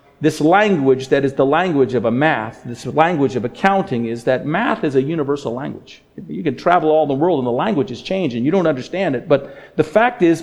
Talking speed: 225 wpm